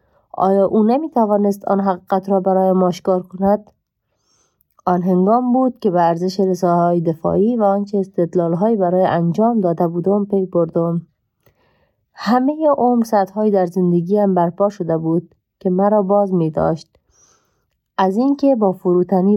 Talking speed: 140 wpm